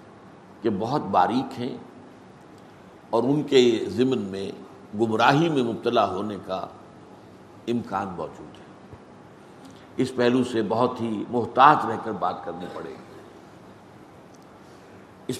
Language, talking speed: Urdu, 115 wpm